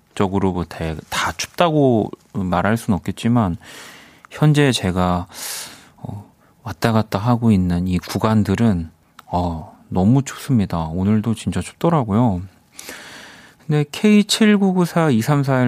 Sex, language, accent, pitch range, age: male, Korean, native, 95-130 Hz, 40-59